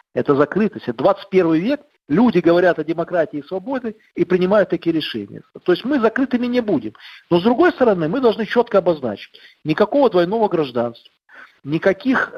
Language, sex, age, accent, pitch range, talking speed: Russian, male, 50-69, native, 160-230 Hz, 160 wpm